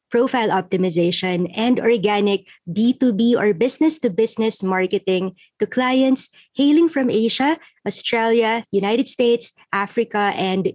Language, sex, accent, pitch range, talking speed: English, male, Filipino, 195-255 Hz, 100 wpm